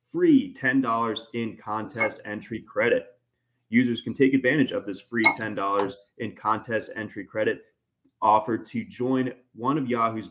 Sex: male